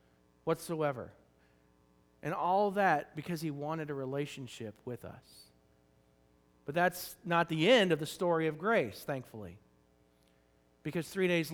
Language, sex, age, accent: English, male, 40-59, American